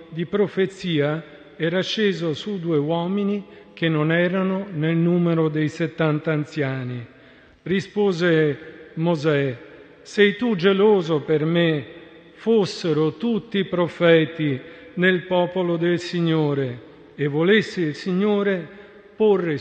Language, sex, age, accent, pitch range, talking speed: Italian, male, 50-69, native, 160-190 Hz, 105 wpm